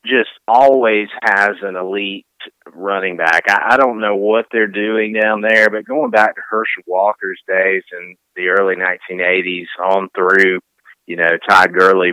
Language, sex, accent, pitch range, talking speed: English, male, American, 100-115 Hz, 160 wpm